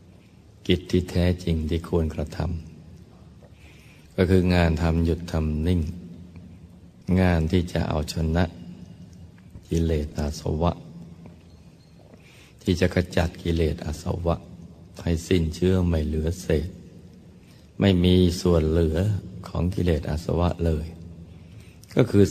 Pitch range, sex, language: 80-90 Hz, male, Thai